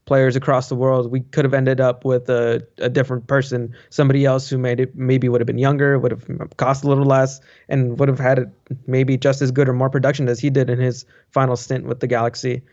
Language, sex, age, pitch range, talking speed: English, male, 20-39, 125-140 Hz, 240 wpm